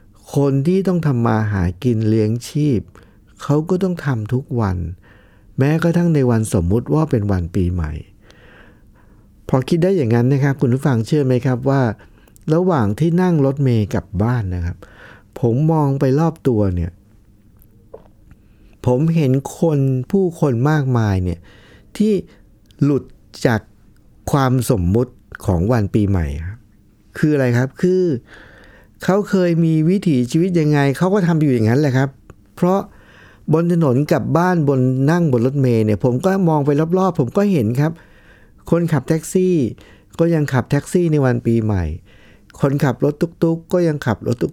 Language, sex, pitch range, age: Thai, male, 105-155 Hz, 60-79